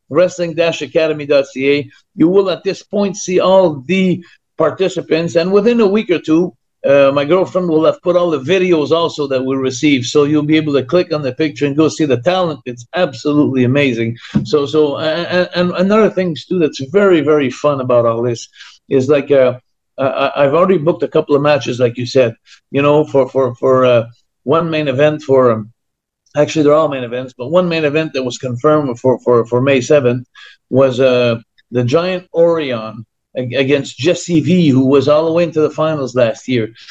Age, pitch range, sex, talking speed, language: 50-69, 130-170 Hz, male, 200 wpm, English